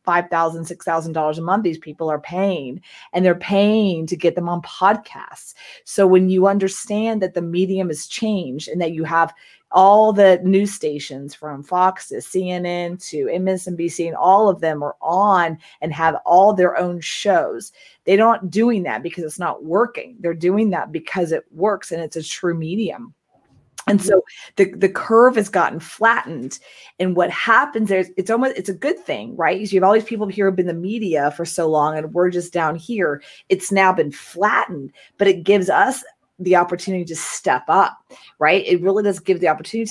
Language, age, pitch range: English, 30-49, 175-215 Hz